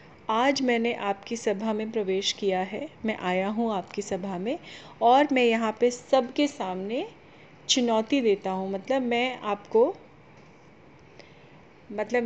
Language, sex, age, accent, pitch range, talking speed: Hindi, female, 30-49, native, 195-240 Hz, 130 wpm